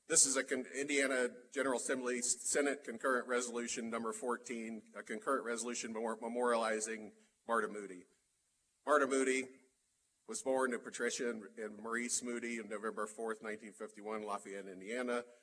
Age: 40-59